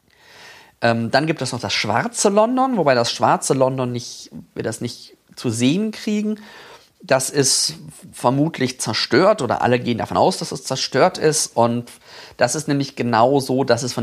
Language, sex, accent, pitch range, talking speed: German, male, German, 115-150 Hz, 170 wpm